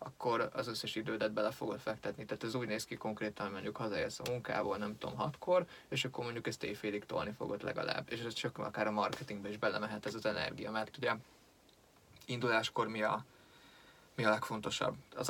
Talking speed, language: 190 wpm, Hungarian